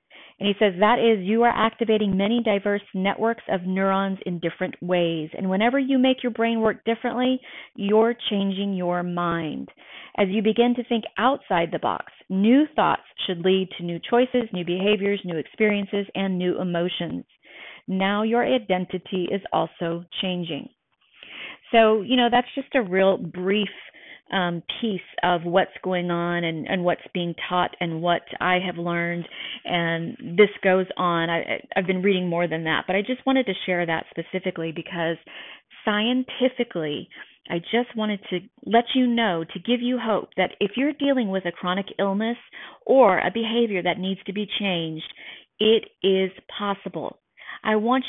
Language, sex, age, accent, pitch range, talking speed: English, female, 40-59, American, 175-230 Hz, 165 wpm